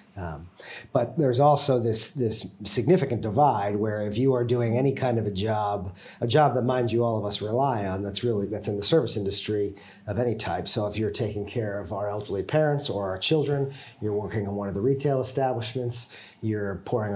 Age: 40-59